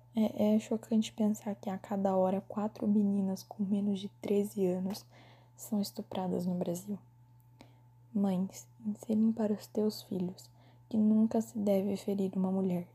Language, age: Portuguese, 10-29